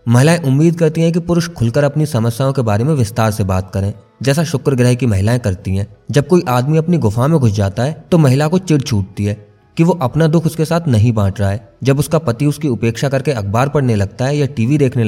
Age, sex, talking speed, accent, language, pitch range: 20-39, male, 205 wpm, native, Hindi, 110-155 Hz